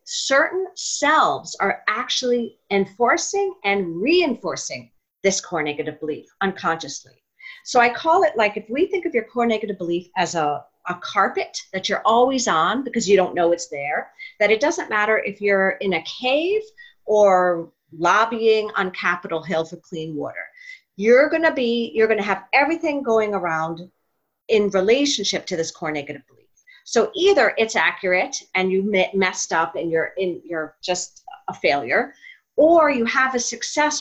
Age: 40-59